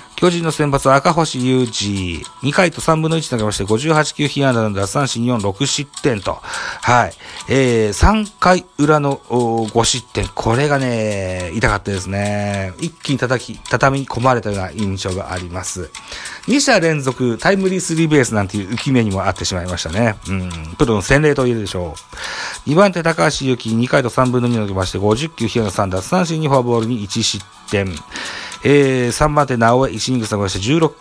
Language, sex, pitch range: Japanese, male, 100-140 Hz